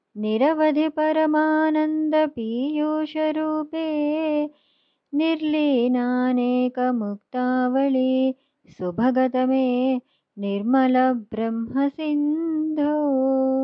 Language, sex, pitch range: Telugu, male, 250-300 Hz